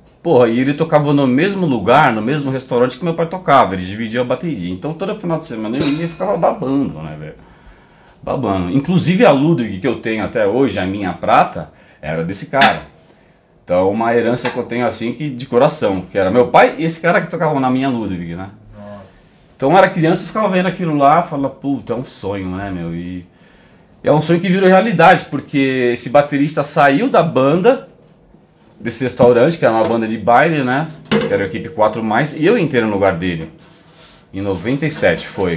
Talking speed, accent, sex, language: 205 wpm, Brazilian, male, Portuguese